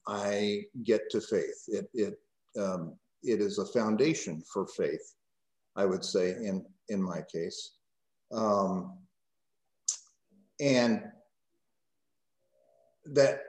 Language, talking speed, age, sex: English, 100 wpm, 50-69, male